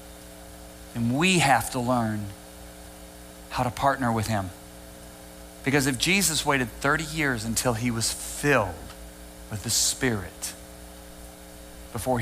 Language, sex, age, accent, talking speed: English, male, 40-59, American, 120 wpm